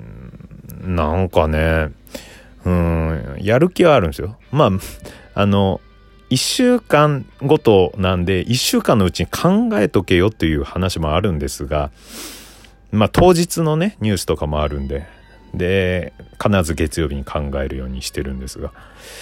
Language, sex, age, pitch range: Japanese, male, 40-59, 80-110 Hz